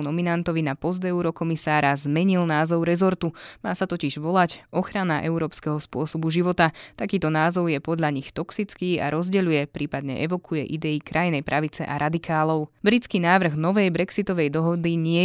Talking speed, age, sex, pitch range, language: 140 wpm, 20-39, female, 150-180 Hz, Slovak